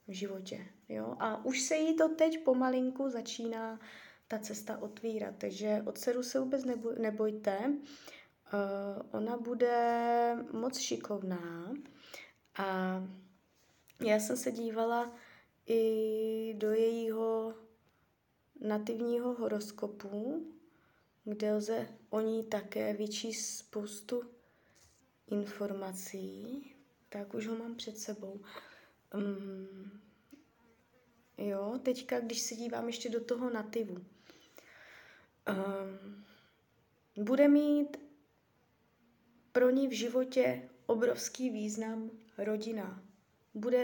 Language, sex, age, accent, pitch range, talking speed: Czech, female, 20-39, native, 205-240 Hz, 90 wpm